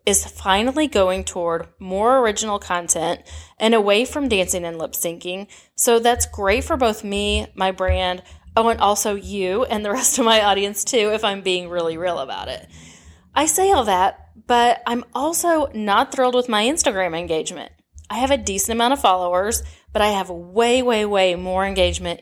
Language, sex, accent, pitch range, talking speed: English, female, American, 180-235 Hz, 185 wpm